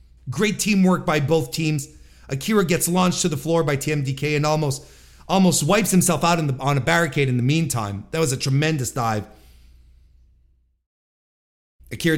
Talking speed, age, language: 165 wpm, 40-59, English